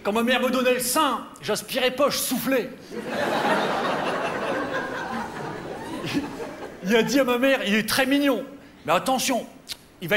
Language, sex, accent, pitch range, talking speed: French, male, French, 215-265 Hz, 150 wpm